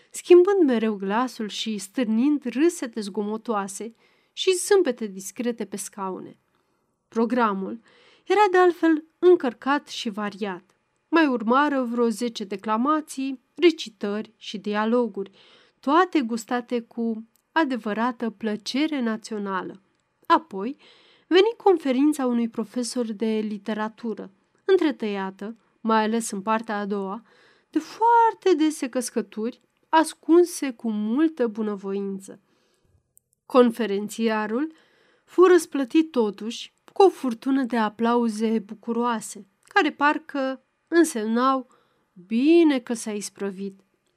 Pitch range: 215-300 Hz